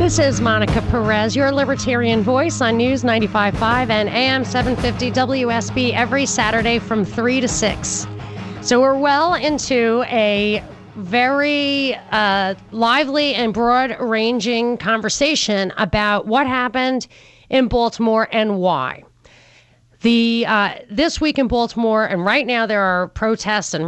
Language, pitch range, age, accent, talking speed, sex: English, 205-260 Hz, 30-49, American, 125 wpm, female